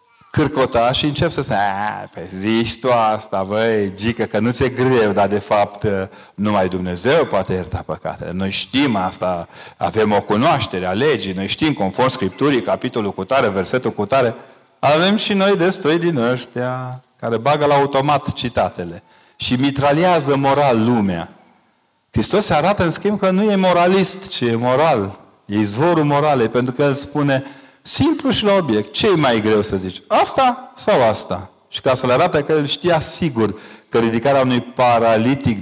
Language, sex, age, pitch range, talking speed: Romanian, male, 40-59, 105-150 Hz, 170 wpm